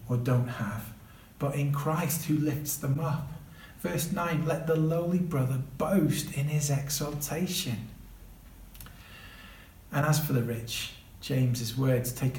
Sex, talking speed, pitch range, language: male, 130 wpm, 110-145 Hz, English